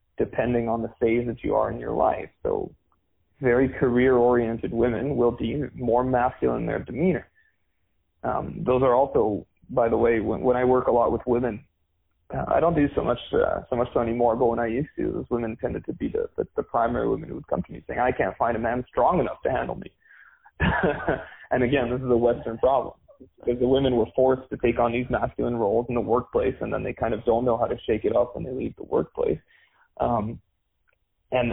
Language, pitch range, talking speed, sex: English, 115-125 Hz, 225 wpm, male